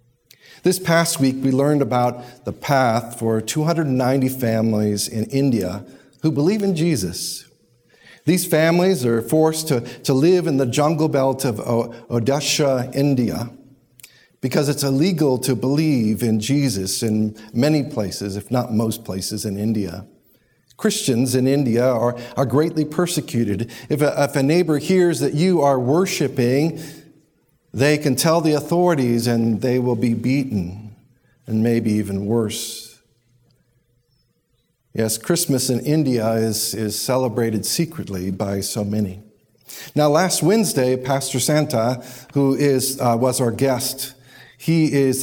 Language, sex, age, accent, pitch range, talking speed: English, male, 50-69, American, 115-145 Hz, 135 wpm